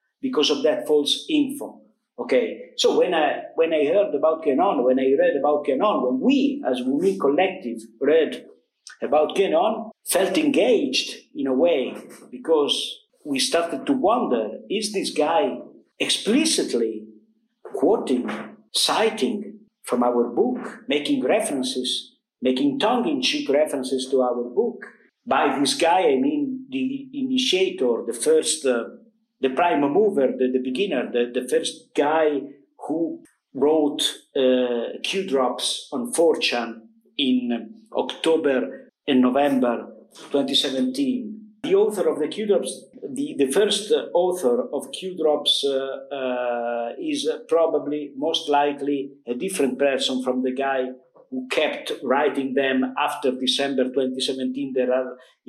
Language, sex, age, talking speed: English, male, 50-69, 130 wpm